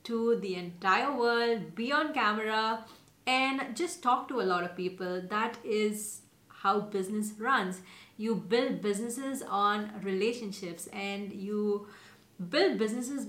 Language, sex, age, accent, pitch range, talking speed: English, female, 30-49, Indian, 200-245 Hz, 130 wpm